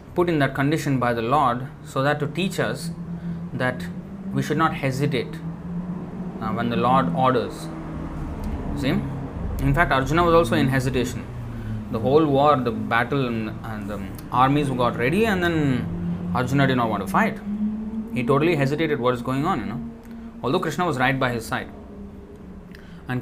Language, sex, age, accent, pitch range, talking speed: English, male, 20-39, Indian, 110-145 Hz, 170 wpm